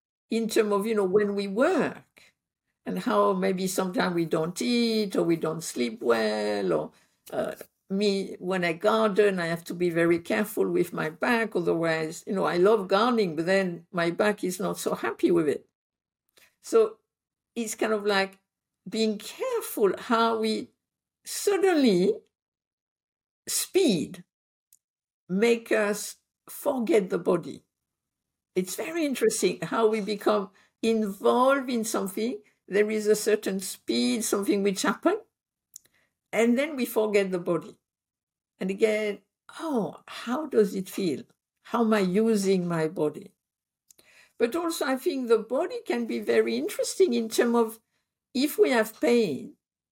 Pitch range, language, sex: 190-245 Hz, English, female